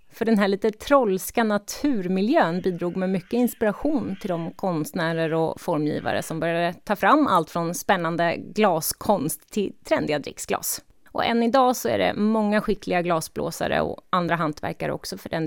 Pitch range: 160-230 Hz